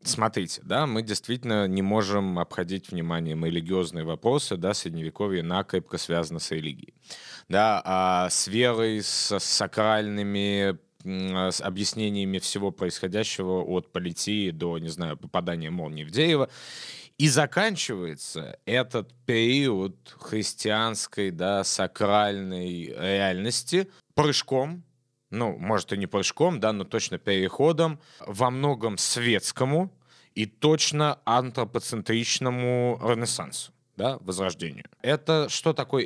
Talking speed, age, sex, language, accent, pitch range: 95 wpm, 20-39, male, Russian, native, 95-125 Hz